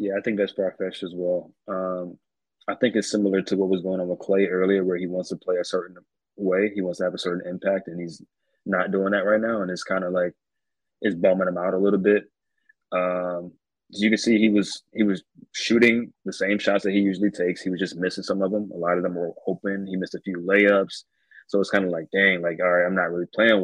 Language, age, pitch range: English, 20-39, 90-100 Hz